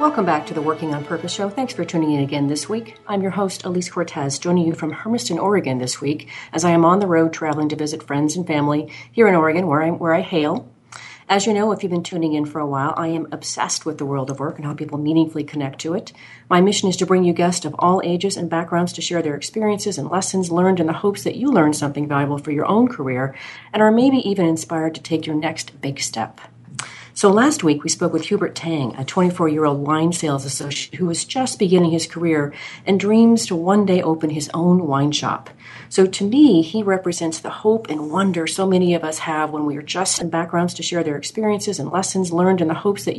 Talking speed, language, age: 240 wpm, English, 40-59